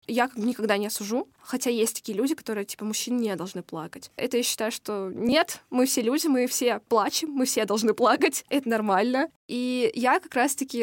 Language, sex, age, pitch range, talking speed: Russian, female, 20-39, 215-260 Hz, 195 wpm